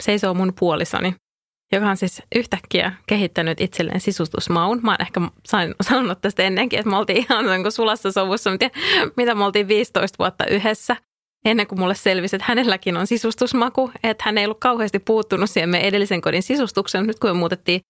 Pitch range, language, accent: 180-225 Hz, English, Finnish